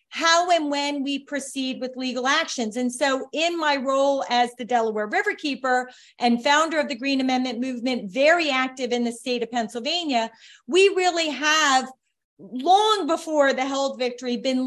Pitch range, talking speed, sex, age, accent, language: 250-315 Hz, 165 wpm, female, 30-49, American, English